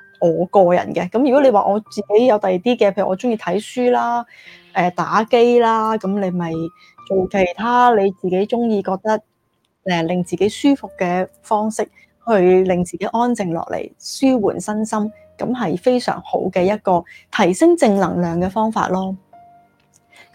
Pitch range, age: 190-250 Hz, 20-39